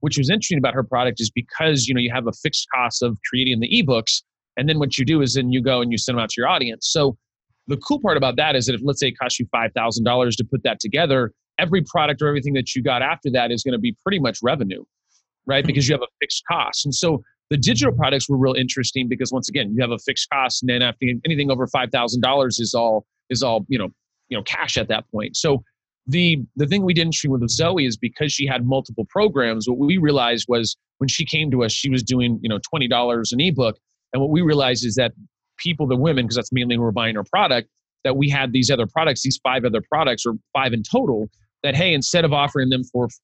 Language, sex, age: English, male, 30-49